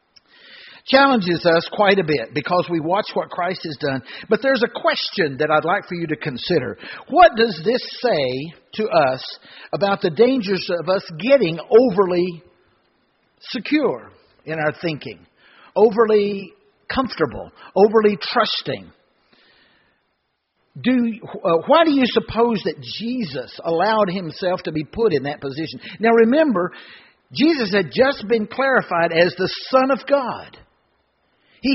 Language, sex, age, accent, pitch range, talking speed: English, male, 60-79, American, 170-230 Hz, 140 wpm